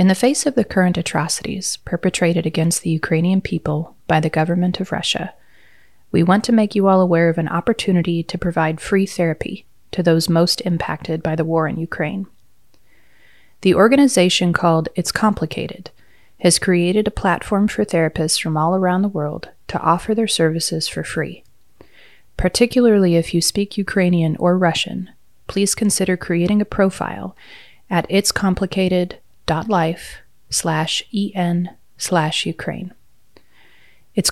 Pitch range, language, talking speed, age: 165-195 Hz, English, 145 wpm, 30-49